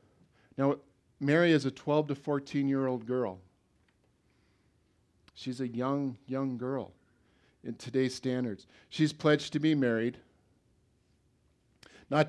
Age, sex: 50-69, male